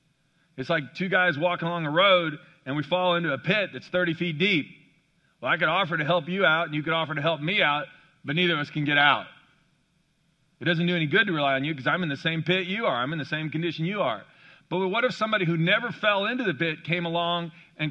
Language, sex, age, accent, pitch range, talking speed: English, male, 40-59, American, 155-185 Hz, 260 wpm